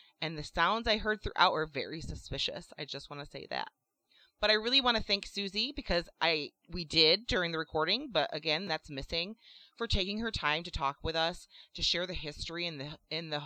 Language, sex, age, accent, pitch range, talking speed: English, female, 30-49, American, 150-195 Hz, 225 wpm